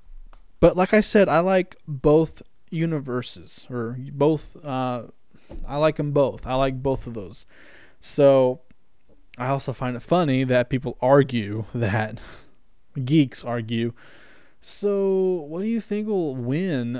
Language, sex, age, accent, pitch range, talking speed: English, male, 20-39, American, 120-150 Hz, 140 wpm